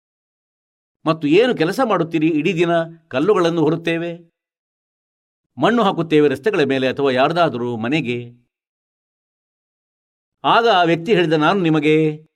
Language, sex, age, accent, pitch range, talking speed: Kannada, male, 50-69, native, 140-180 Hz, 100 wpm